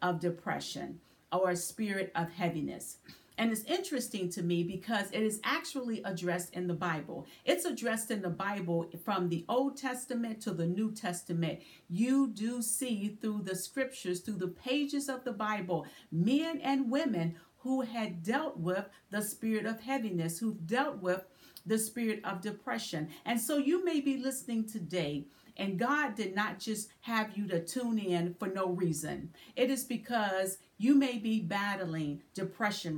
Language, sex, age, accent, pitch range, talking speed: English, female, 40-59, American, 180-235 Hz, 165 wpm